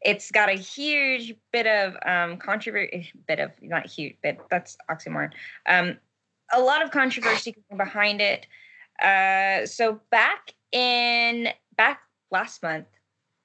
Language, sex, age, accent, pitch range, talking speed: English, female, 20-39, American, 170-225 Hz, 125 wpm